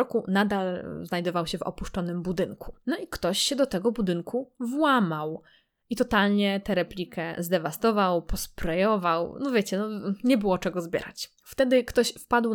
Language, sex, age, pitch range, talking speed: Polish, female, 20-39, 185-225 Hz, 145 wpm